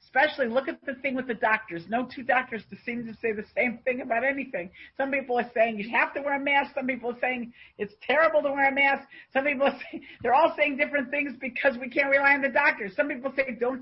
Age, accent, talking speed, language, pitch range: 50-69, American, 255 wpm, English, 175-265 Hz